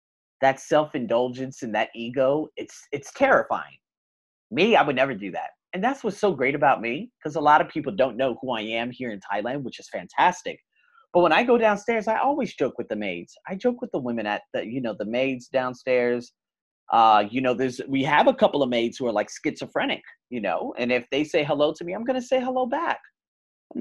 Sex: male